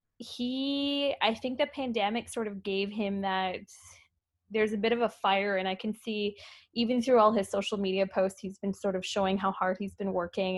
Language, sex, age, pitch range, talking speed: English, female, 20-39, 190-225 Hz, 210 wpm